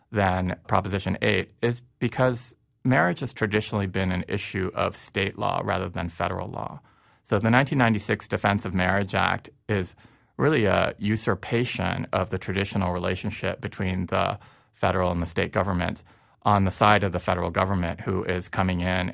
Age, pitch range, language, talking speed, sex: 30-49, 90-110 Hz, English, 160 wpm, male